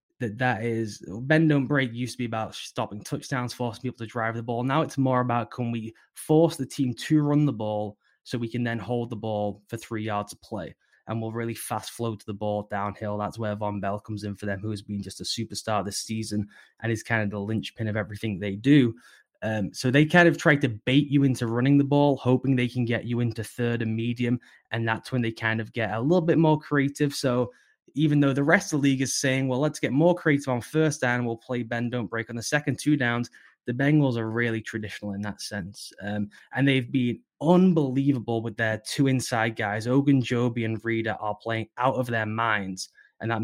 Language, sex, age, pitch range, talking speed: English, male, 10-29, 110-135 Hz, 235 wpm